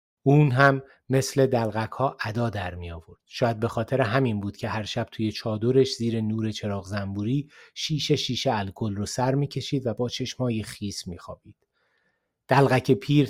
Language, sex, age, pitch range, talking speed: Persian, male, 30-49, 105-130 Hz, 165 wpm